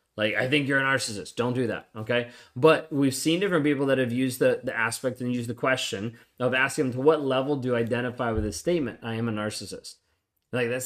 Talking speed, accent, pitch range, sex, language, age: 240 wpm, American, 115-150 Hz, male, English, 20-39